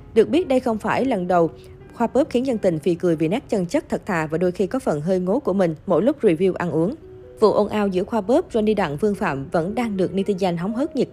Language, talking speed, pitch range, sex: Vietnamese, 275 wpm, 185-235 Hz, female